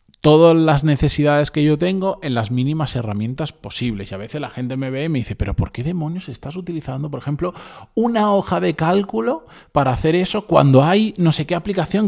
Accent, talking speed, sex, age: Spanish, 210 wpm, male, 20-39